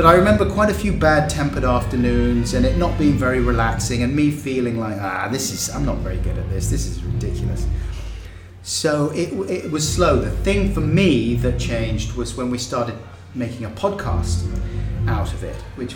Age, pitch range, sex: 30-49, 95-125 Hz, male